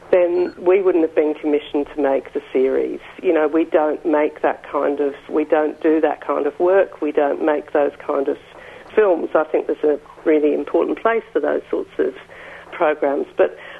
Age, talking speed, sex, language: 50-69, 195 wpm, female, English